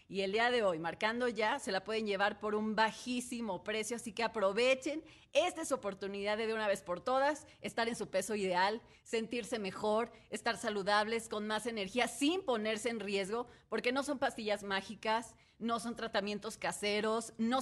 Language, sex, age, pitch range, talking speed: Spanish, female, 30-49, 205-250 Hz, 185 wpm